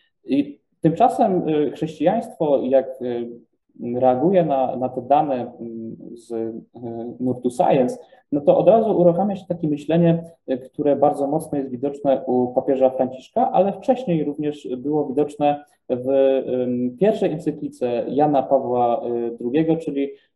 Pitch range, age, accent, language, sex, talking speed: 125-155 Hz, 20-39, Polish, English, male, 125 wpm